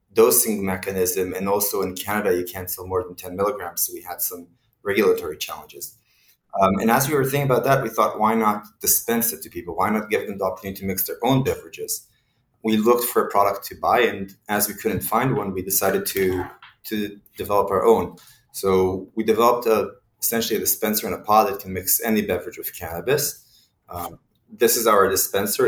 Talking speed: 205 wpm